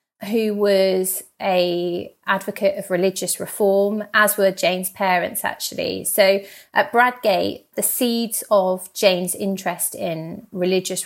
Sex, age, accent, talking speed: female, 30-49, British, 120 wpm